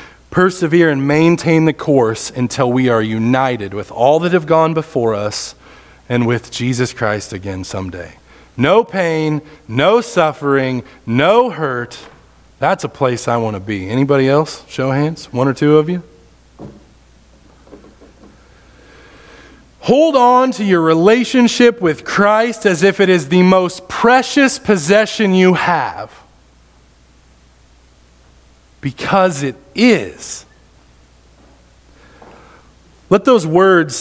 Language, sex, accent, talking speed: English, male, American, 120 wpm